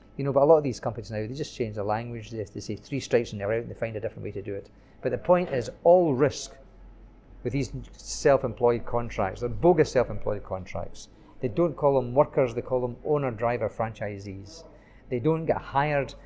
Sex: male